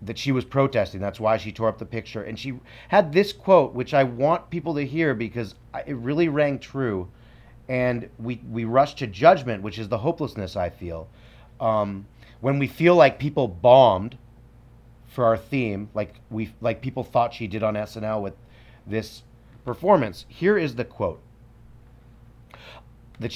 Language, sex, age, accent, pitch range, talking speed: English, male, 30-49, American, 110-130 Hz, 170 wpm